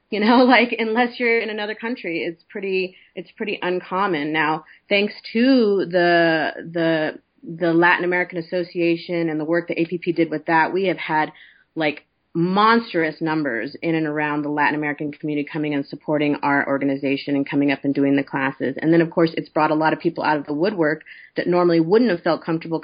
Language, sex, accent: English, female, American